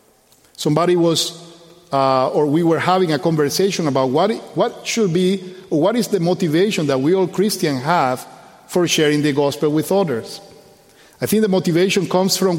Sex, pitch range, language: male, 150-185 Hz, English